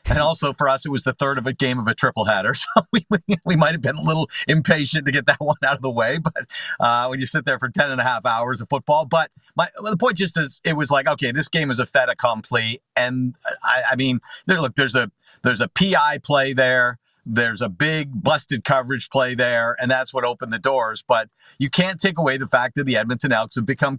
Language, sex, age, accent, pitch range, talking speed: English, male, 50-69, American, 125-160 Hz, 260 wpm